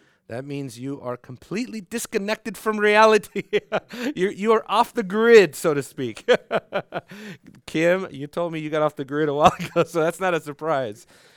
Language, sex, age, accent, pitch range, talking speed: English, male, 40-59, American, 110-155 Hz, 175 wpm